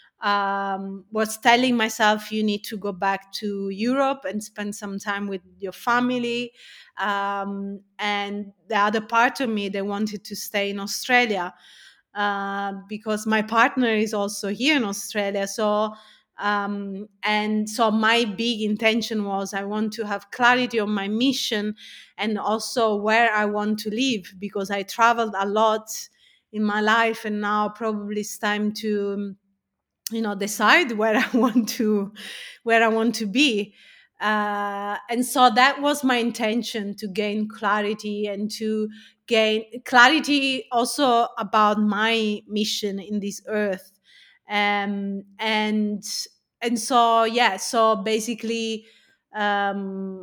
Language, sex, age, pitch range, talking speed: English, female, 30-49, 205-230 Hz, 140 wpm